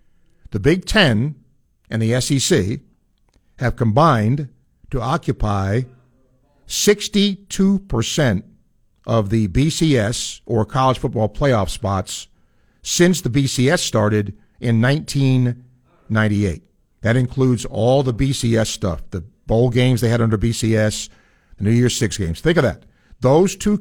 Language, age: English, 60-79